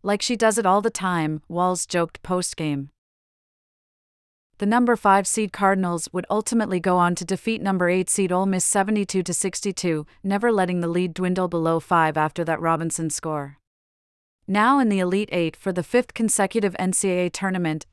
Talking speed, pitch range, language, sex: 165 wpm, 165-205 Hz, English, female